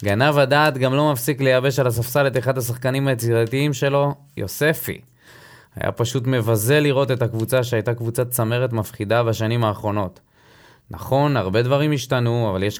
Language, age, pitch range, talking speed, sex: Hebrew, 20-39, 110-135 Hz, 150 wpm, male